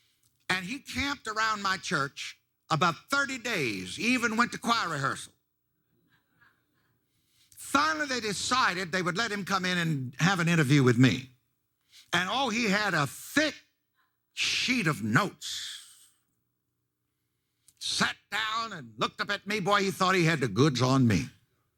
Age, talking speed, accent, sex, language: 60-79, 150 wpm, American, male, English